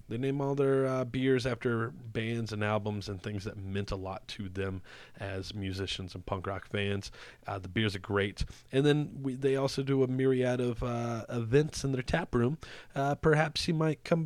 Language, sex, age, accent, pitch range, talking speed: English, male, 30-49, American, 105-140 Hz, 200 wpm